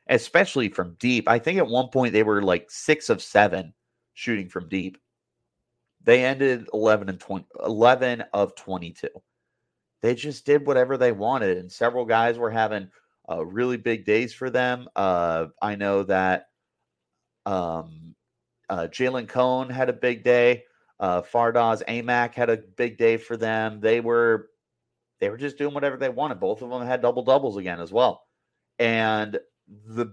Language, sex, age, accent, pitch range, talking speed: English, male, 30-49, American, 100-125 Hz, 165 wpm